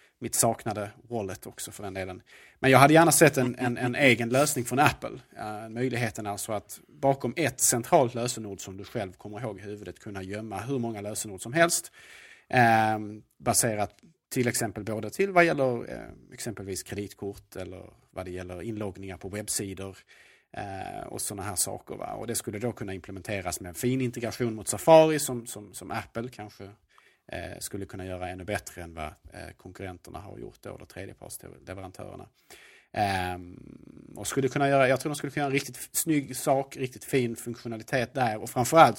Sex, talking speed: male, 170 wpm